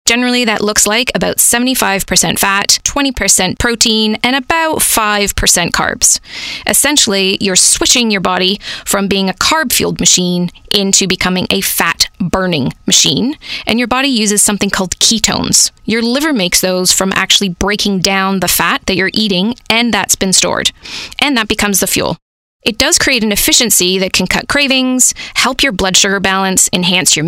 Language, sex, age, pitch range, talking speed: English, female, 20-39, 195-250 Hz, 160 wpm